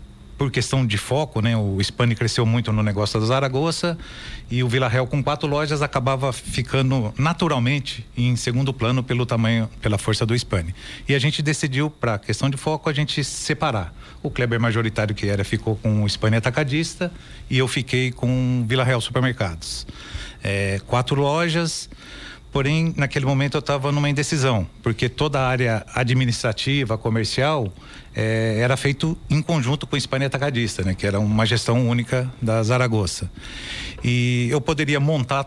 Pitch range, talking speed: 110-140 Hz, 165 wpm